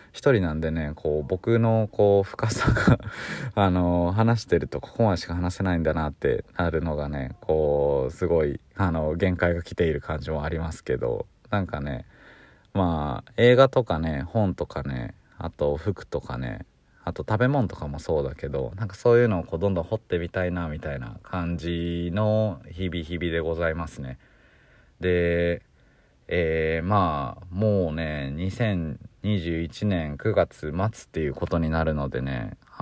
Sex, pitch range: male, 80-100 Hz